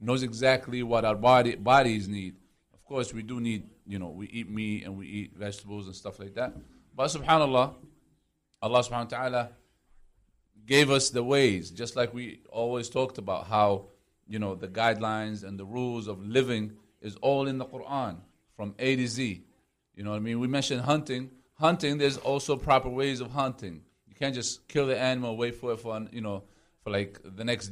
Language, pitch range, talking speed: English, 105-130 Hz, 195 wpm